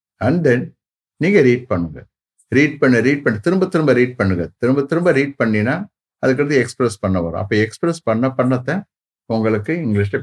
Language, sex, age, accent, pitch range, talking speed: English, male, 60-79, Indian, 100-140 Hz, 170 wpm